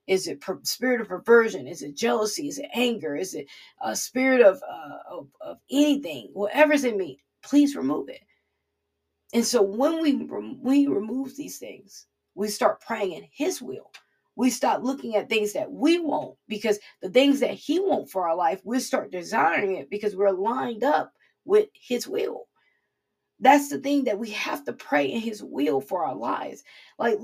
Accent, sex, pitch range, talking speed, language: American, female, 215-290 Hz, 185 wpm, English